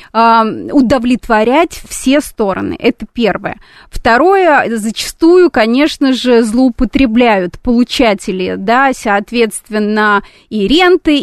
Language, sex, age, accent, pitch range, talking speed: Russian, female, 20-39, native, 220-275 Hz, 80 wpm